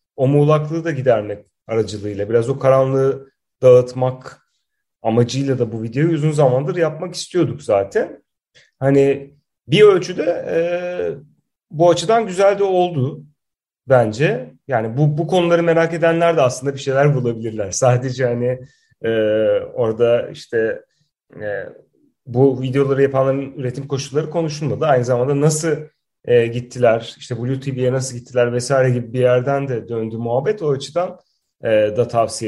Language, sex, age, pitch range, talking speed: Turkish, male, 30-49, 125-165 Hz, 135 wpm